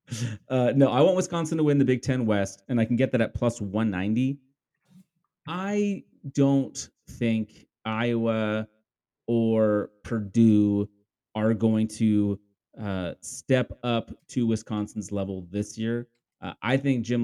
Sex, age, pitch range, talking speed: male, 30-49, 105-140 Hz, 140 wpm